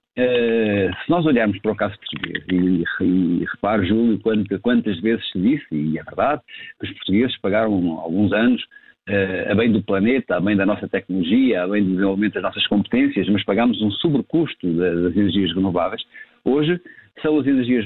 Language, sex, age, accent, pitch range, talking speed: Portuguese, male, 50-69, Portuguese, 100-135 Hz, 195 wpm